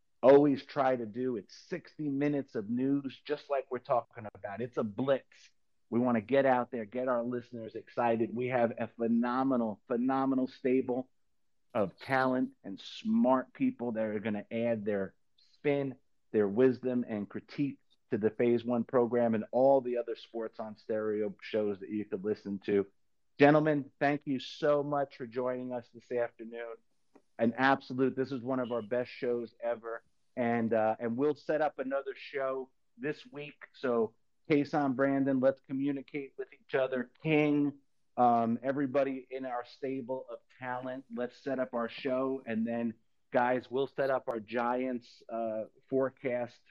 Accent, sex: American, male